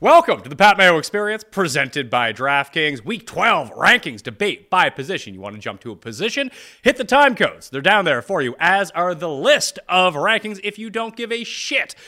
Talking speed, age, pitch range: 215 wpm, 30-49, 145-225 Hz